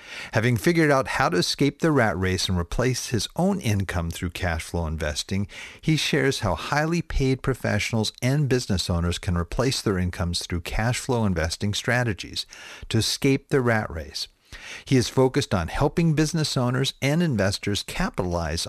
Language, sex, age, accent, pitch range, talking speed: English, male, 50-69, American, 90-125 Hz, 165 wpm